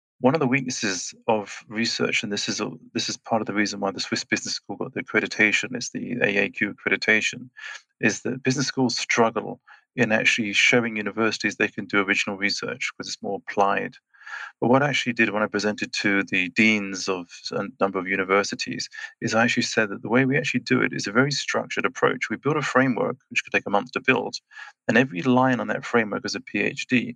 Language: English